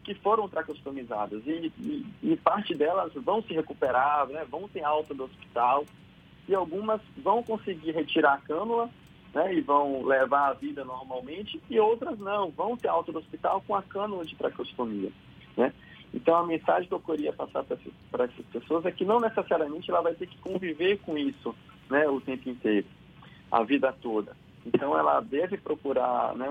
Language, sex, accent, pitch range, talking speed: Portuguese, male, Brazilian, 130-170 Hz, 175 wpm